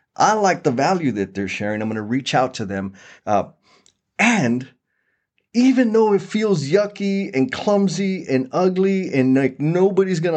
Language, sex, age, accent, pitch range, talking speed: English, male, 30-49, American, 105-140 Hz, 170 wpm